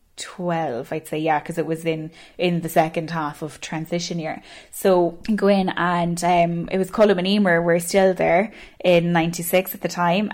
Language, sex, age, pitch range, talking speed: English, female, 10-29, 175-205 Hz, 195 wpm